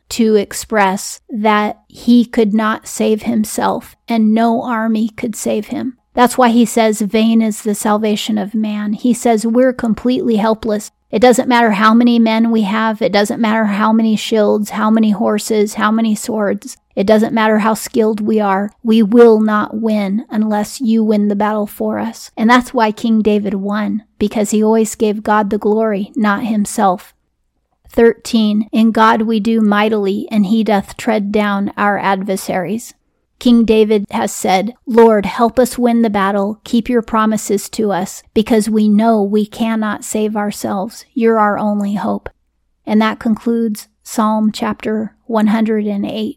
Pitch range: 210-230 Hz